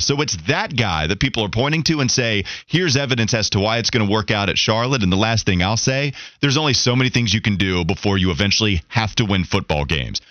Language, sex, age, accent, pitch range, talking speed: English, male, 30-49, American, 105-150 Hz, 260 wpm